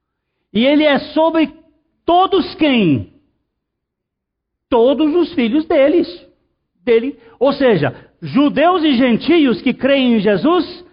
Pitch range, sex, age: 185-290 Hz, male, 50-69